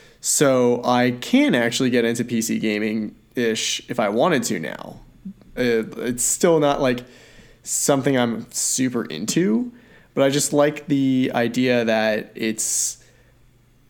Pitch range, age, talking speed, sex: 120-135 Hz, 20-39, 125 wpm, male